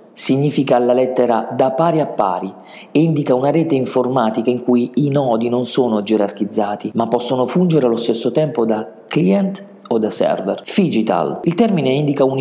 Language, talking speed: Italian, 170 wpm